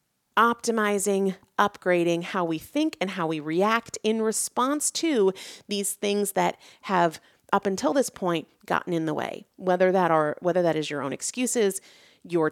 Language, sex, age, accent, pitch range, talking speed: English, female, 30-49, American, 160-215 Hz, 155 wpm